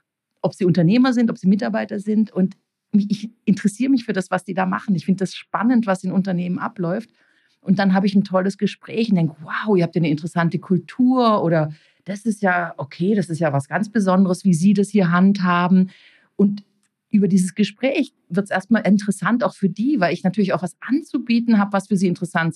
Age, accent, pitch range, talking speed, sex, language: 50-69, German, 180-215 Hz, 210 wpm, female, German